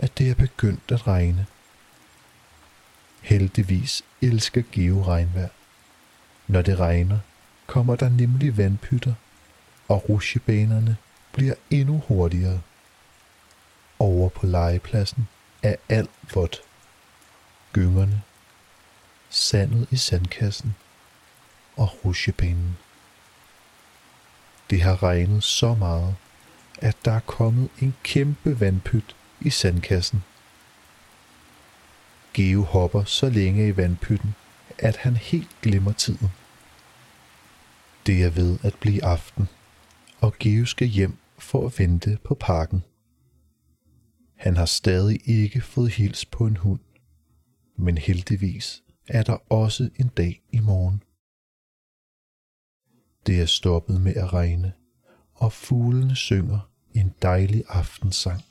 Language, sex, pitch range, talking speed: Danish, male, 90-115 Hz, 105 wpm